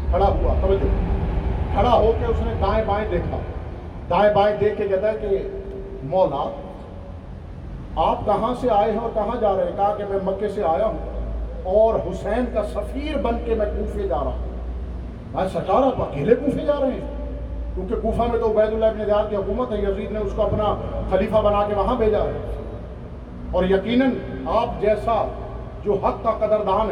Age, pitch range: 50-69, 195-225 Hz